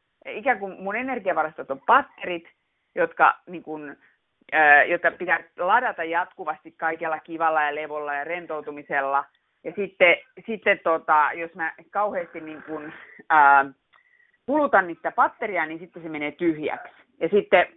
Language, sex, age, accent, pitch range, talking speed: Finnish, female, 30-49, native, 150-185 Hz, 130 wpm